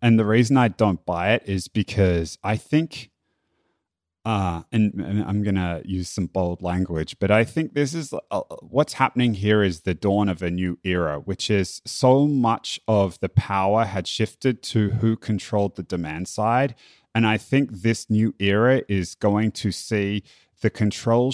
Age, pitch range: 30-49, 95-125 Hz